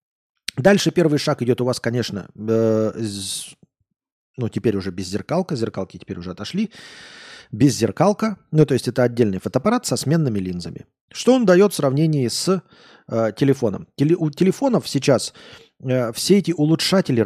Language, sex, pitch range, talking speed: Russian, male, 115-160 Hz, 145 wpm